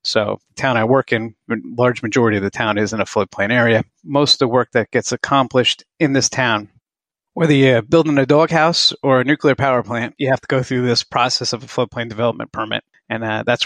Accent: American